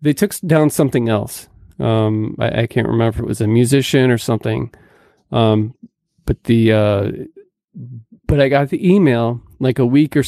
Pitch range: 115-155 Hz